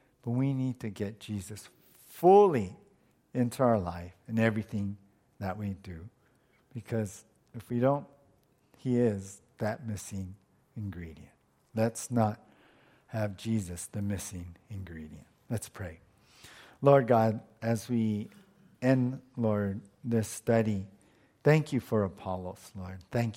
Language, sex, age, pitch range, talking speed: English, male, 50-69, 105-130 Hz, 120 wpm